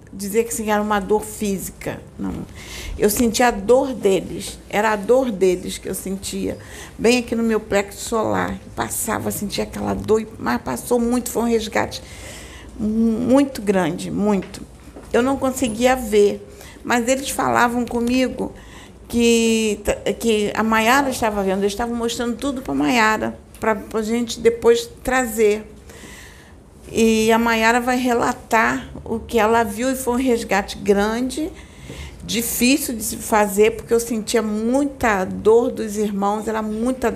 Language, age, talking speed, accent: Portuguese, 50-69, 150 wpm, Brazilian